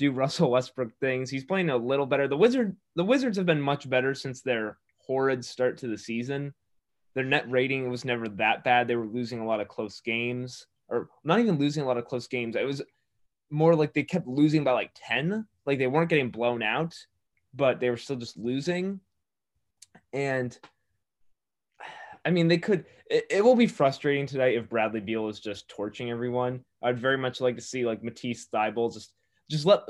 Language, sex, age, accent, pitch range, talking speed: English, male, 20-39, American, 120-150 Hz, 200 wpm